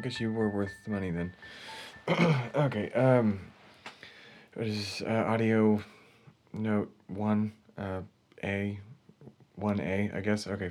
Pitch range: 95-110 Hz